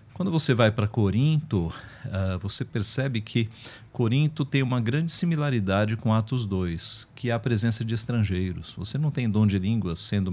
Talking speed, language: 170 wpm, Portuguese